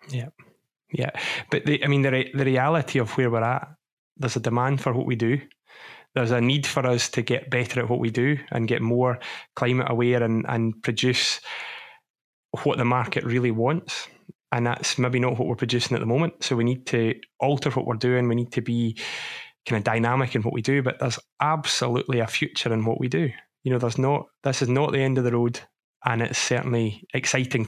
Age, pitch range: 20-39, 120-135 Hz